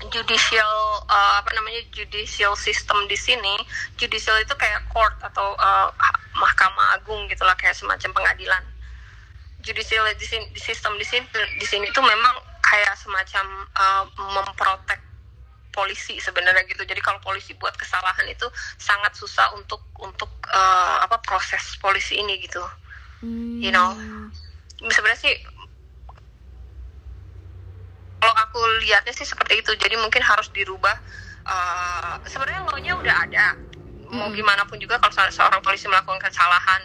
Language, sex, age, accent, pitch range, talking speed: Indonesian, female, 20-39, native, 180-215 Hz, 130 wpm